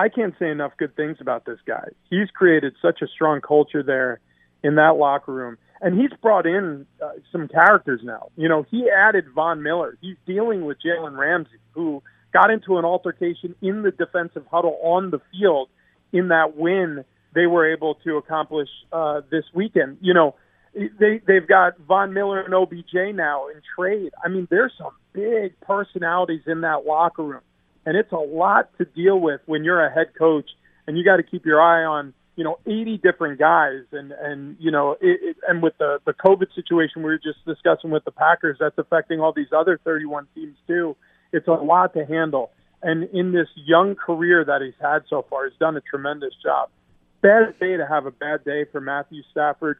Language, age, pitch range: English, 40-59, 145-180 Hz